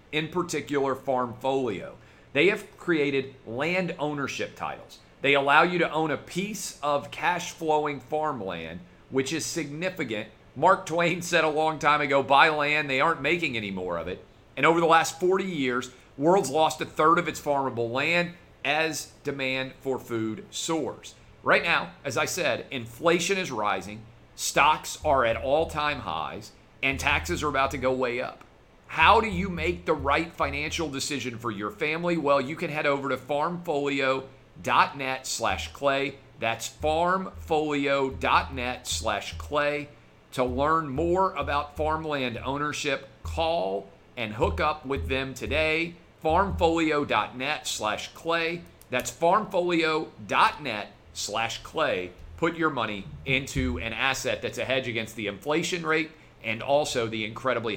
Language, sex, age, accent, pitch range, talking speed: English, male, 40-59, American, 125-160 Hz, 145 wpm